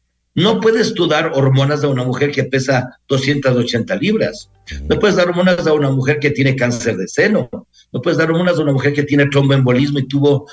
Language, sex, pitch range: Spanish, male, 125-160 Hz